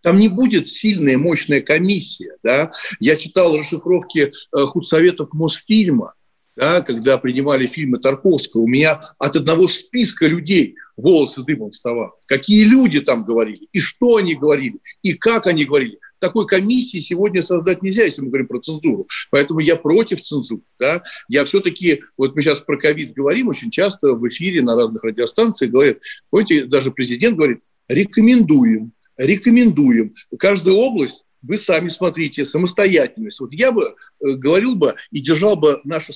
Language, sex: Russian, male